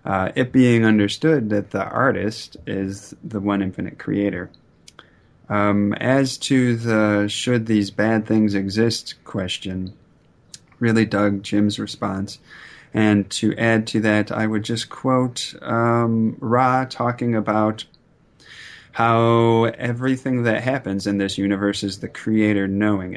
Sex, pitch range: male, 100-115 Hz